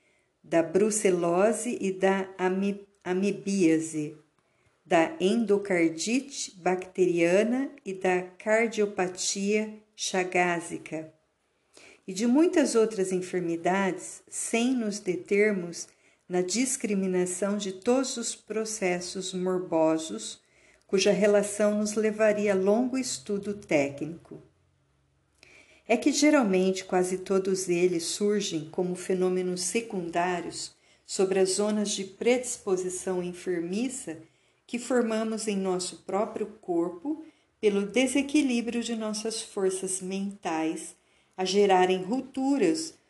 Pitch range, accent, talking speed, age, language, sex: 180-225 Hz, Brazilian, 95 wpm, 50-69, Portuguese, female